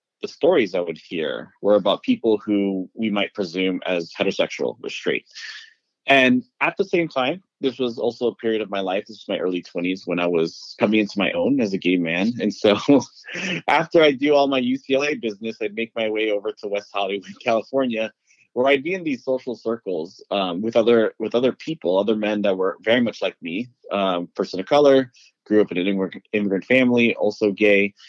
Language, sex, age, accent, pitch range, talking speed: English, male, 30-49, American, 100-130 Hz, 205 wpm